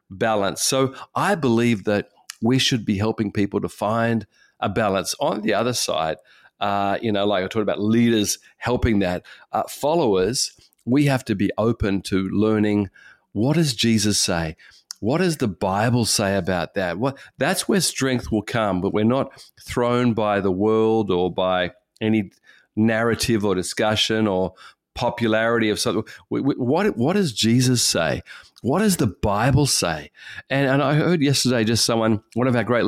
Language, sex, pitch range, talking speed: English, male, 100-120 Hz, 170 wpm